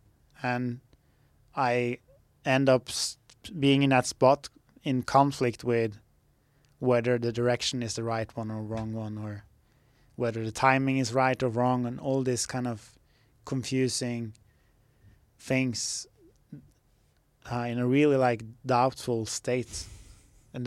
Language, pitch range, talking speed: English, 115-130 Hz, 130 wpm